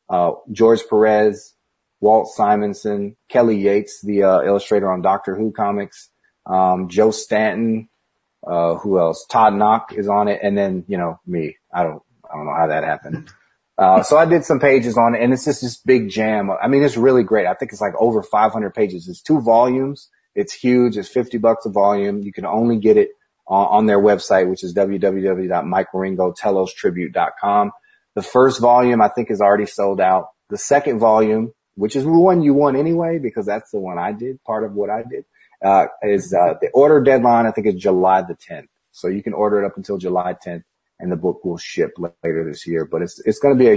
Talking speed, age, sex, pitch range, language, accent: 210 wpm, 30-49, male, 100-125 Hz, English, American